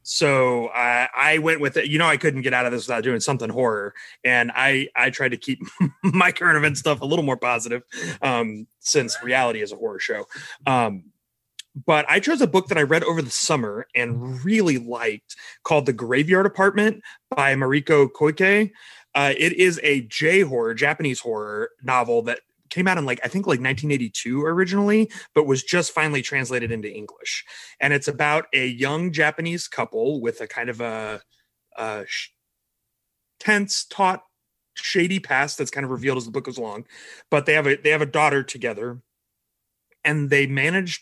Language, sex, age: English, male, 30-49